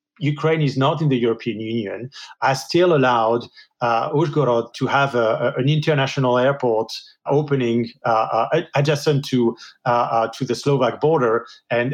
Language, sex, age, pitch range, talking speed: English, male, 40-59, 120-145 Hz, 155 wpm